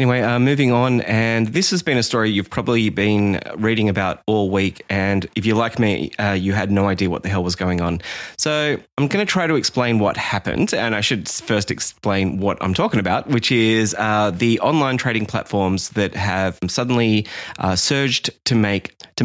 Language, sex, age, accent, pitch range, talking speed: English, male, 20-39, Australian, 105-135 Hz, 205 wpm